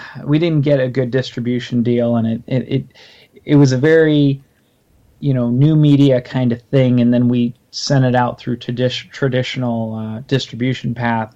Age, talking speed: 30-49, 185 wpm